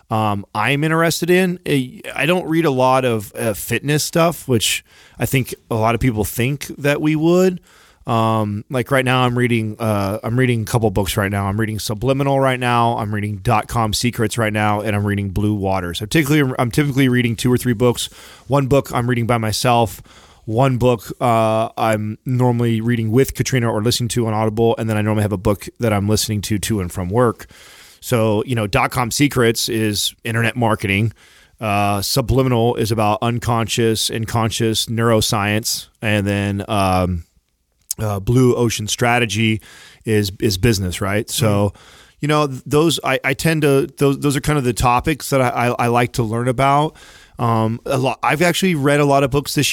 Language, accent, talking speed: English, American, 195 wpm